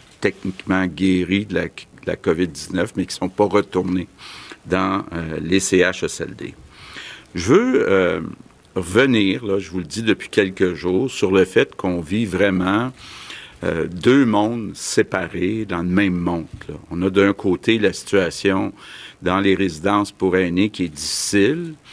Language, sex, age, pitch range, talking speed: French, male, 60-79, 90-105 Hz, 155 wpm